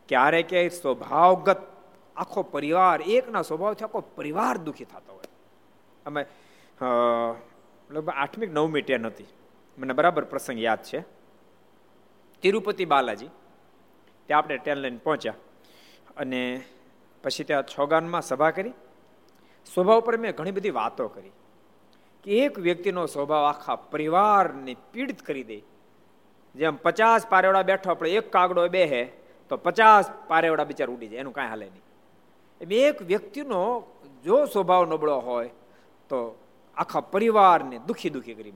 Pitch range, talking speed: 140-195 Hz, 130 wpm